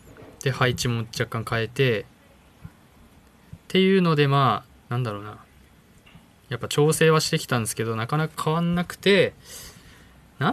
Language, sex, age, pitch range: Japanese, male, 20-39, 115-155 Hz